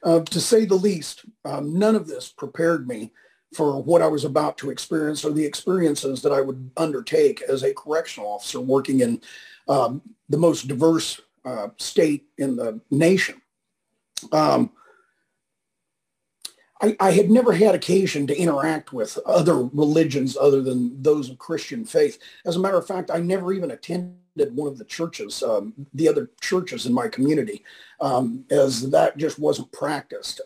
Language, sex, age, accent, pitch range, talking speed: English, male, 40-59, American, 145-230 Hz, 165 wpm